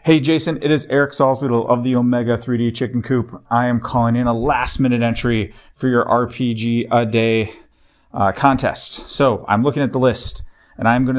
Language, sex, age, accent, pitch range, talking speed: English, male, 30-49, American, 110-145 Hz, 195 wpm